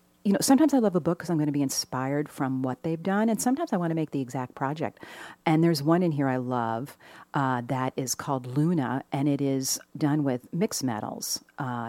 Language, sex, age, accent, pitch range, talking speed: English, female, 50-69, American, 125-165 Hz, 230 wpm